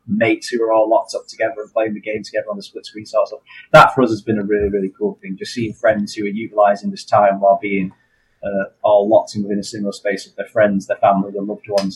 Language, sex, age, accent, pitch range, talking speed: English, male, 20-39, British, 100-110 Hz, 265 wpm